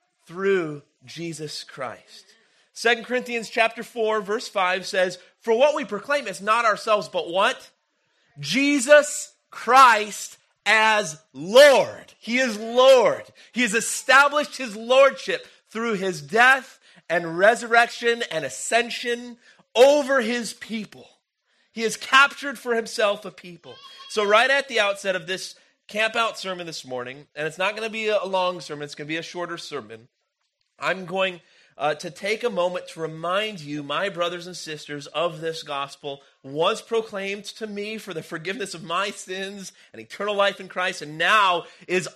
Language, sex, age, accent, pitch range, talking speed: English, male, 30-49, American, 160-225 Hz, 155 wpm